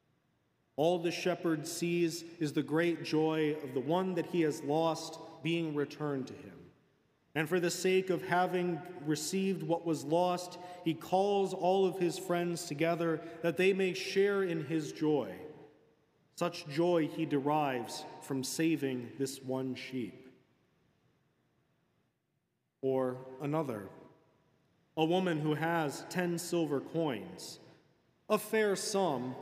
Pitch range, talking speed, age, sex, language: 150-180 Hz, 130 wpm, 40-59, male, English